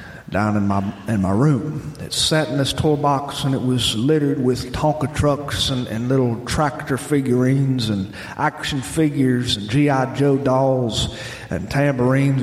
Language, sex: English, male